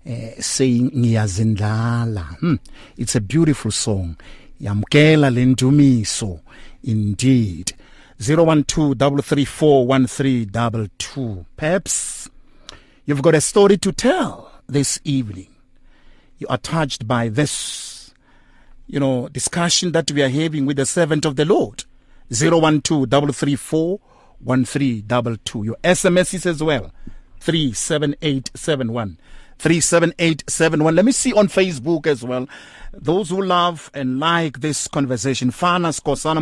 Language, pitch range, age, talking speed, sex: English, 130-170 Hz, 50-69, 110 wpm, male